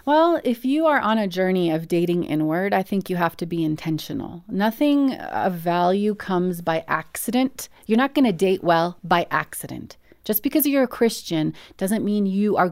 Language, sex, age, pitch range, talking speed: English, female, 30-49, 175-235 Hz, 190 wpm